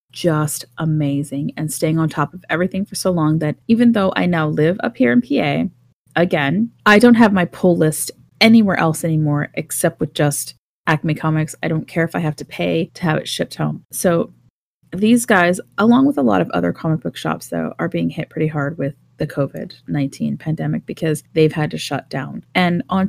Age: 30-49